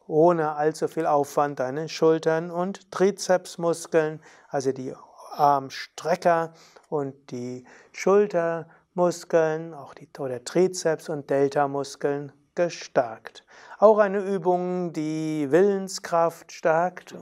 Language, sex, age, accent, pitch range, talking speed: German, male, 60-79, German, 145-180 Hz, 95 wpm